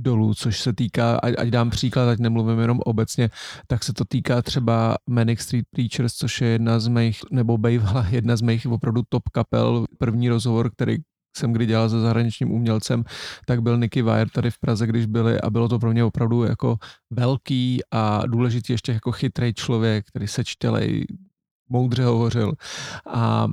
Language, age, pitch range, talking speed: Czech, 40-59, 115-135 Hz, 185 wpm